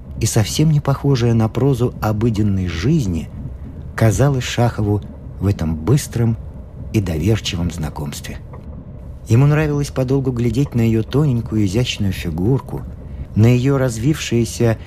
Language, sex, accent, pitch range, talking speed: Russian, male, native, 85-130 Hz, 115 wpm